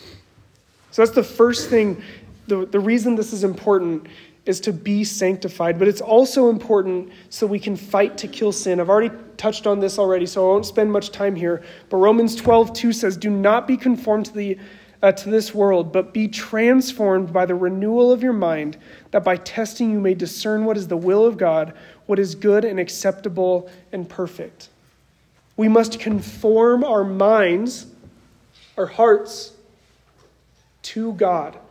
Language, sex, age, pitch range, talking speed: English, male, 30-49, 190-225 Hz, 170 wpm